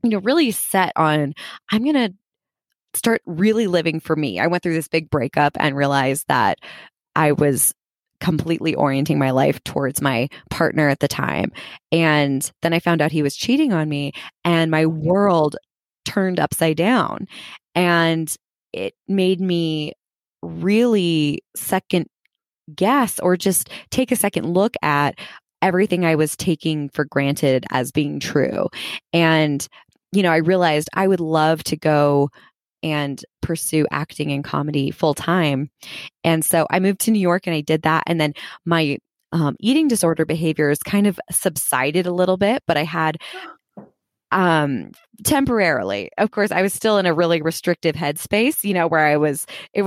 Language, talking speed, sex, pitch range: English, 160 wpm, female, 150-195 Hz